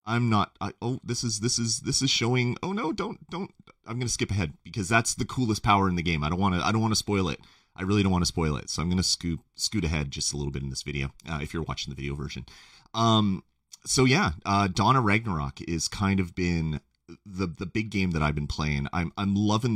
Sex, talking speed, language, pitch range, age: male, 250 wpm, English, 80-115 Hz, 30-49